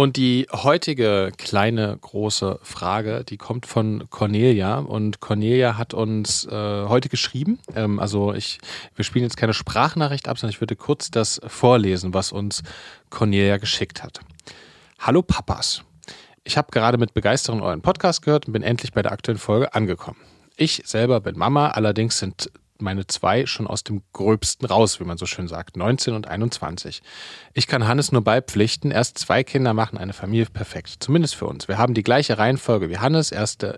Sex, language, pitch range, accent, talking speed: male, German, 105-130 Hz, German, 175 wpm